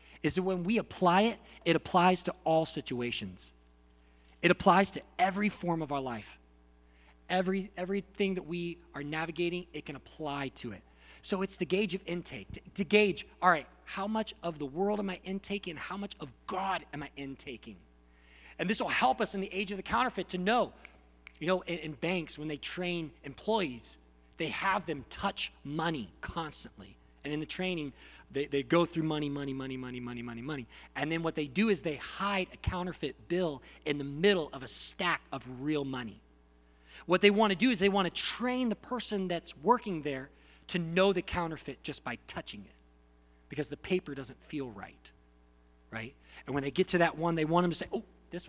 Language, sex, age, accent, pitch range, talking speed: English, male, 30-49, American, 130-185 Hz, 200 wpm